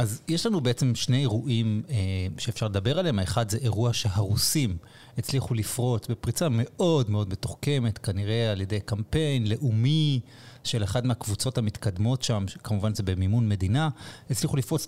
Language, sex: Hebrew, male